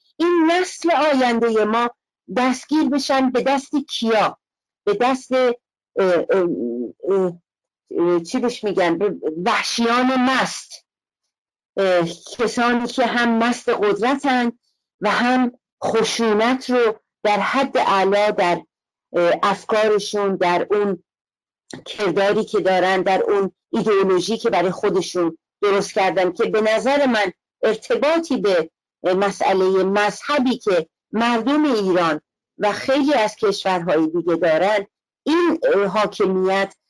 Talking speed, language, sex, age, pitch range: 100 wpm, Persian, female, 50-69, 190-255 Hz